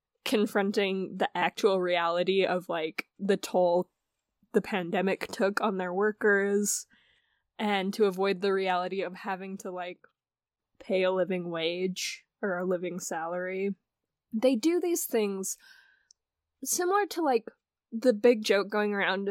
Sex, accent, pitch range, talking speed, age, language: female, American, 190-225 Hz, 135 wpm, 10-29, English